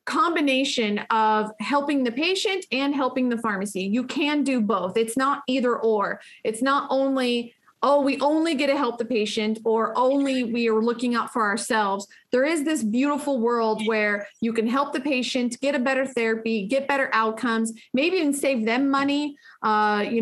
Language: English